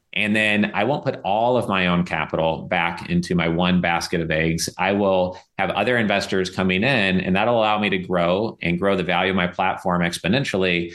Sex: male